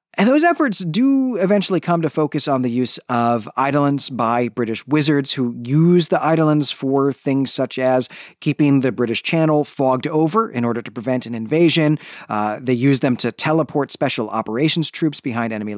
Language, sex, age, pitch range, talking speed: English, male, 40-59, 120-155 Hz, 180 wpm